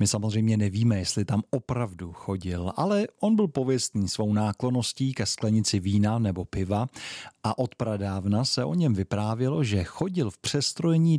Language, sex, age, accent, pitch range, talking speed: Czech, male, 40-59, native, 100-135 Hz, 150 wpm